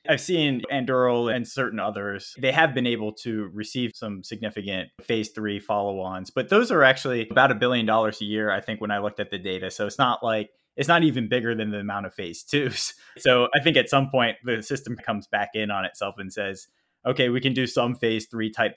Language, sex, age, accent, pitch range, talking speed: English, male, 20-39, American, 105-130 Hz, 230 wpm